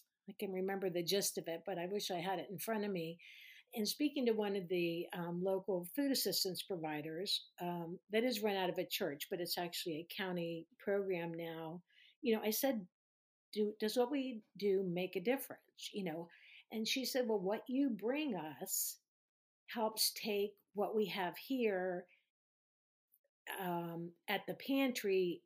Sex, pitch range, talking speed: female, 180-225 Hz, 175 wpm